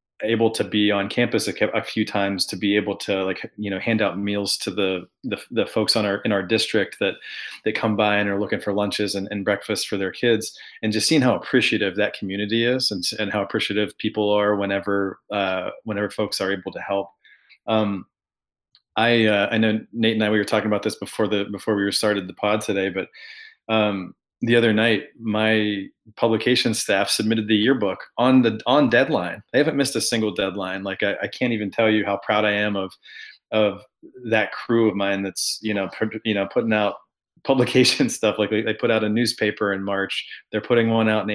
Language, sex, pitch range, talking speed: English, male, 100-110 Hz, 210 wpm